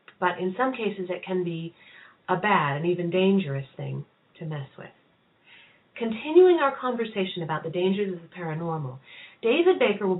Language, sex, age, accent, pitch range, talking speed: English, female, 40-59, American, 175-255 Hz, 165 wpm